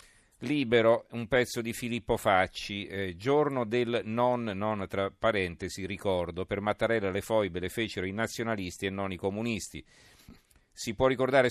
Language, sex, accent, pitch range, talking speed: Italian, male, native, 95-115 Hz, 150 wpm